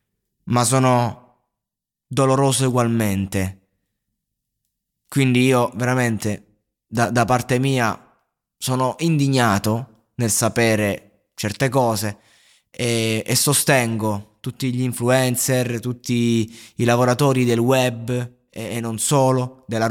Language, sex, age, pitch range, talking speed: Italian, male, 20-39, 110-130 Hz, 100 wpm